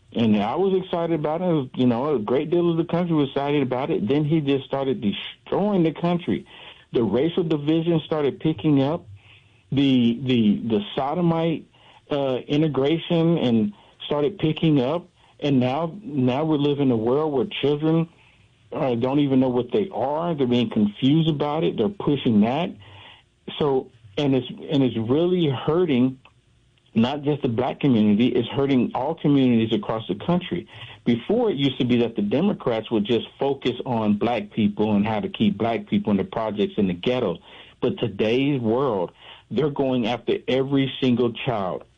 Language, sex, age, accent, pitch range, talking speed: English, male, 50-69, American, 115-155 Hz, 175 wpm